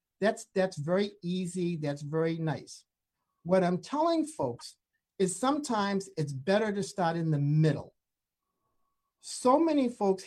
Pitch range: 160-205 Hz